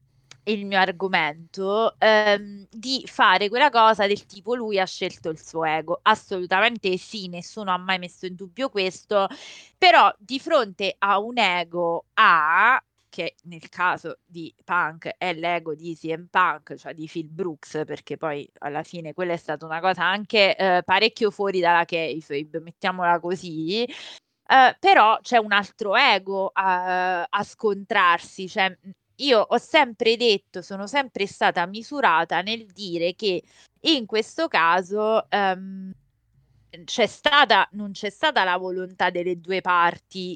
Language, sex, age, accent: Italian, female, 20-39, native